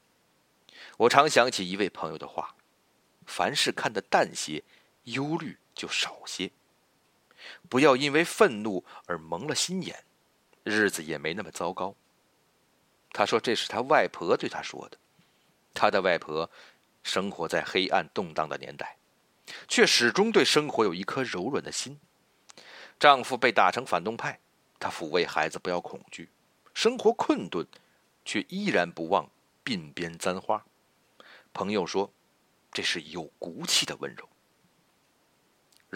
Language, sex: Chinese, male